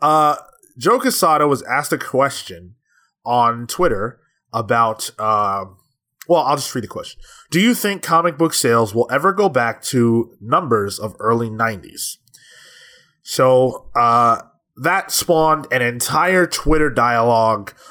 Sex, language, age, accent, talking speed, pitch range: male, English, 20-39, American, 135 wpm, 115-150 Hz